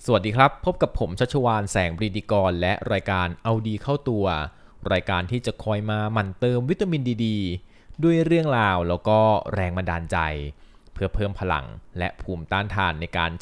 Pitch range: 95-120 Hz